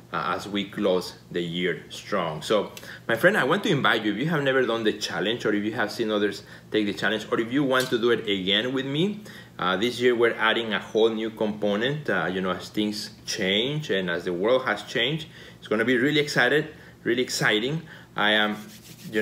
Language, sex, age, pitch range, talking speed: English, male, 30-49, 105-125 Hz, 225 wpm